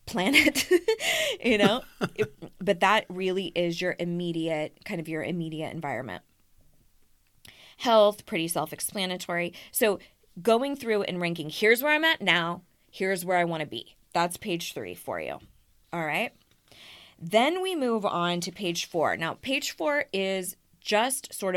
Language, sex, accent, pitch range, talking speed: English, female, American, 165-205 Hz, 145 wpm